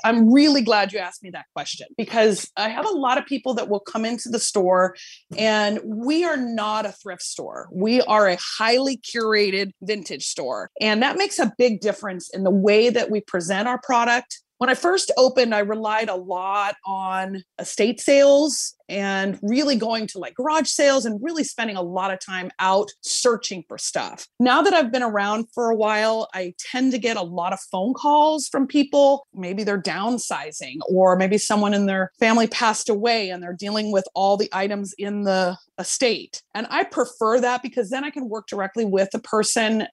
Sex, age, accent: female, 30-49, American